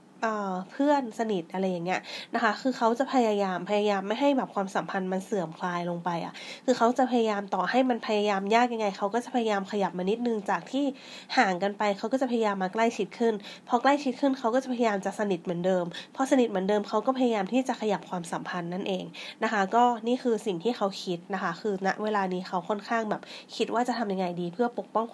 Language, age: Thai, 20-39